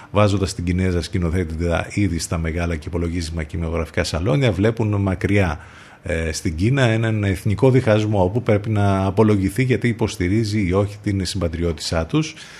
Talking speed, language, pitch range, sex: 145 wpm, Greek, 85-110 Hz, male